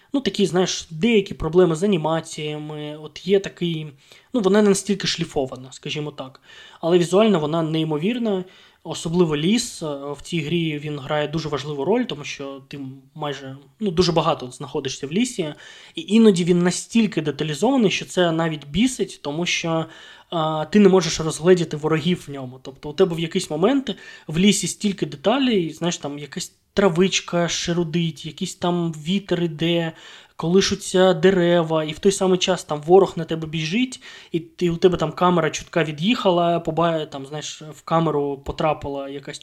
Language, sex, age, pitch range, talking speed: Ukrainian, male, 20-39, 150-185 Hz, 160 wpm